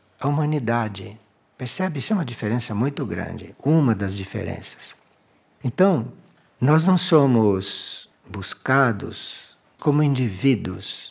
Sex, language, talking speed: male, Portuguese, 105 wpm